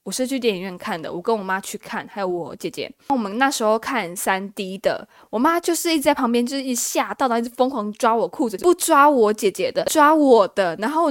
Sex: female